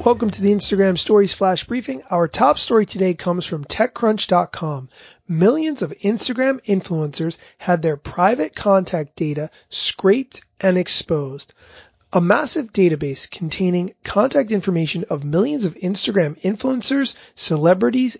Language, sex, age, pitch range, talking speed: English, male, 30-49, 155-200 Hz, 125 wpm